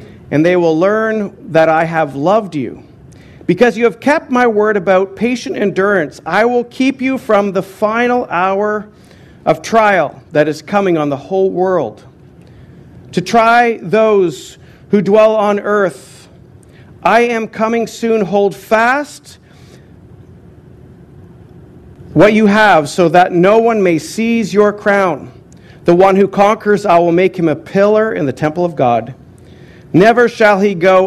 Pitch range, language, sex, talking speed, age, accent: 160-215 Hz, English, male, 150 wpm, 50-69, American